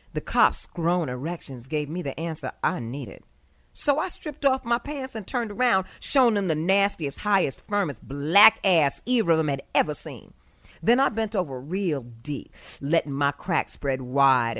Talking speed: 180 wpm